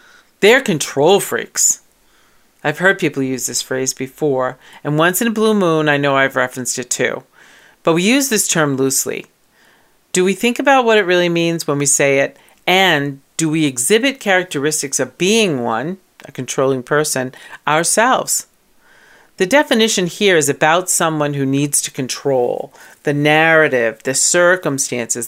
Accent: American